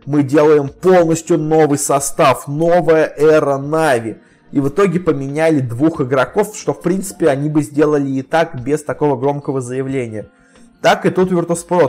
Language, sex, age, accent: Russian, male, 20-39, native